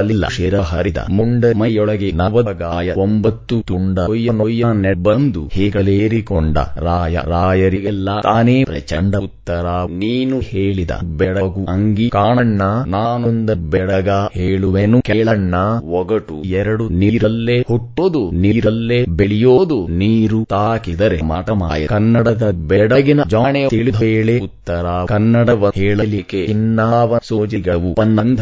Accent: Indian